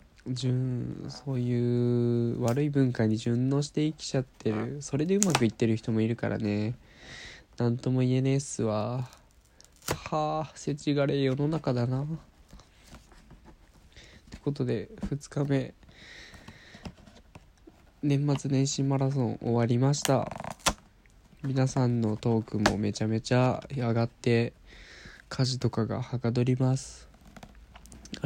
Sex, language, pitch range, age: male, Japanese, 110-135 Hz, 20-39